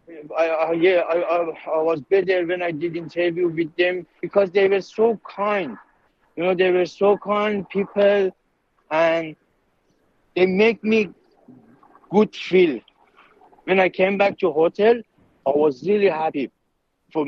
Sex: male